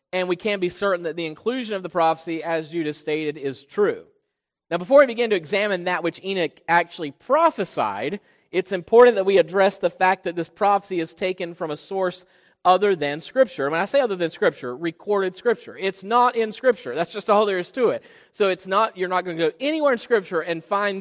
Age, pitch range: 40-59, 175-230 Hz